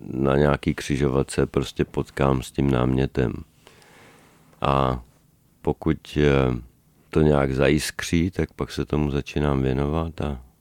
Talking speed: 120 wpm